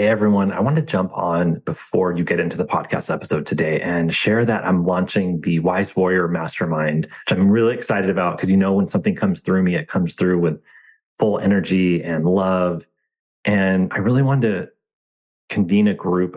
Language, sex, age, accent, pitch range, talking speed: English, male, 30-49, American, 90-105 Hz, 195 wpm